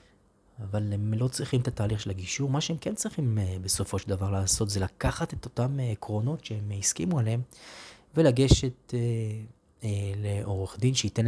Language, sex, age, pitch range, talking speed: Hebrew, male, 20-39, 95-115 Hz, 150 wpm